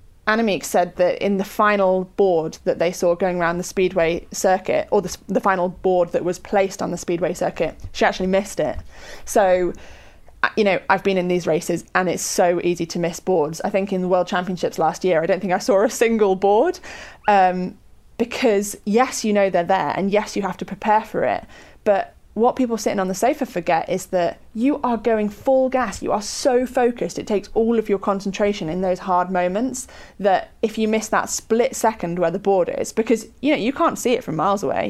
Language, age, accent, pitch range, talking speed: English, 20-39, British, 185-230 Hz, 220 wpm